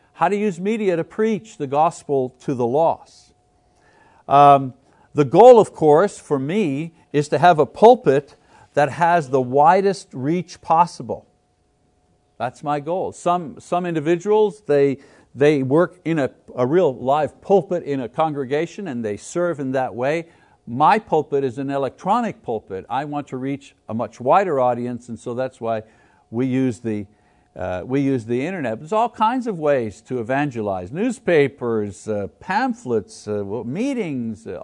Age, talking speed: 60-79, 160 wpm